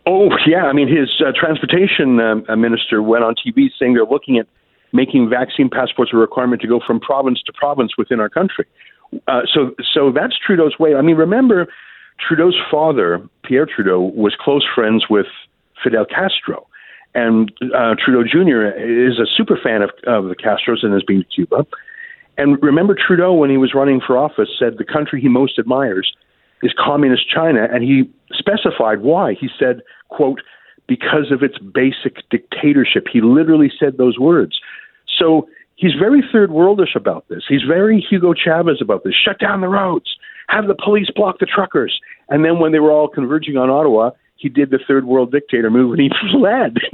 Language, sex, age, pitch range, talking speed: English, male, 50-69, 130-200 Hz, 185 wpm